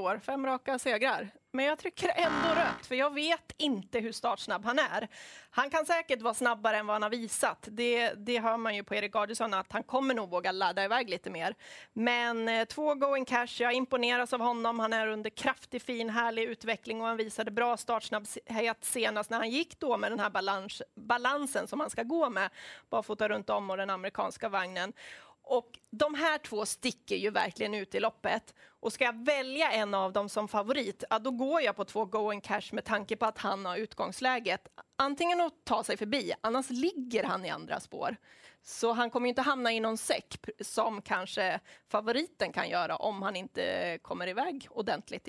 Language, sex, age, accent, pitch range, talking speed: Swedish, female, 30-49, native, 215-270 Hz, 205 wpm